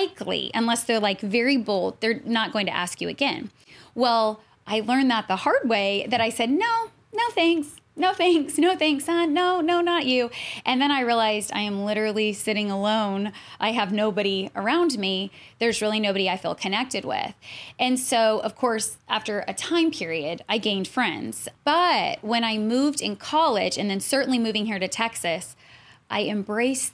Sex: female